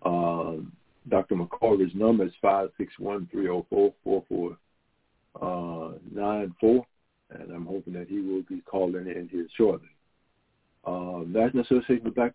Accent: American